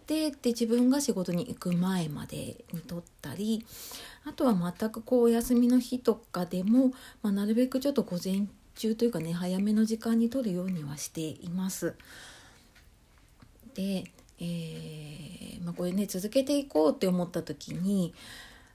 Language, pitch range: Japanese, 170-235 Hz